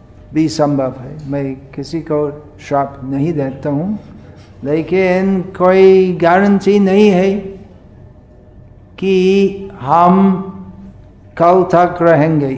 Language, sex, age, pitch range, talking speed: Hindi, male, 50-69, 115-175 Hz, 95 wpm